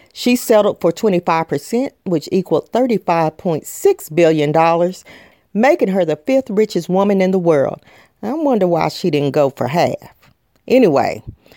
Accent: American